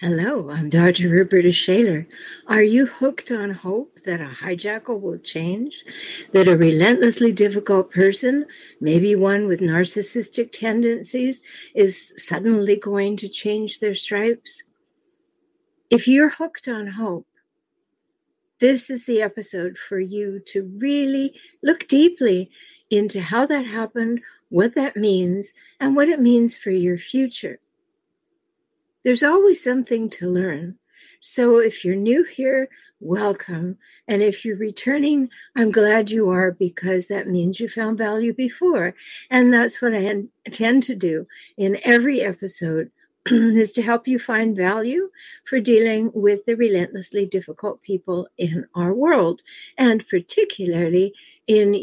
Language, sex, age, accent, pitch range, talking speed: English, female, 60-79, American, 190-260 Hz, 135 wpm